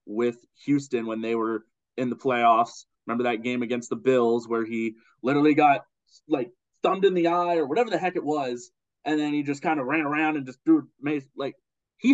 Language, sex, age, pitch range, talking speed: English, male, 20-39, 120-160 Hz, 215 wpm